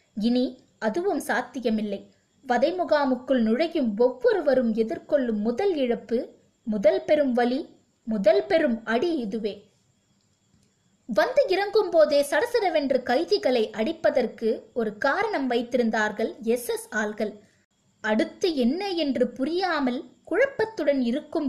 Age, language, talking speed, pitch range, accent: 20-39, Tamil, 100 wpm, 230-310 Hz, native